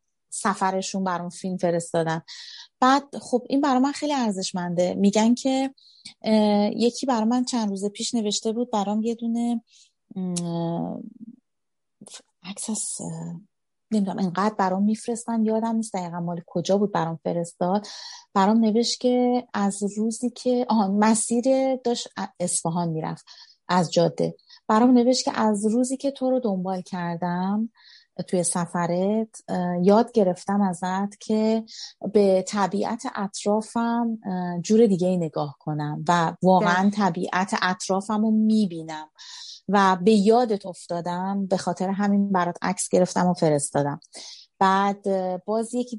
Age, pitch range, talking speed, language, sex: 30-49, 185-230 Hz, 125 wpm, Persian, female